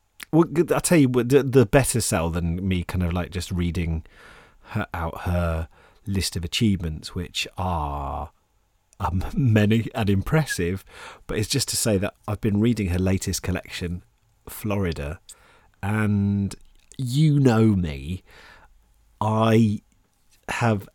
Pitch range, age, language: 90-110 Hz, 40-59, English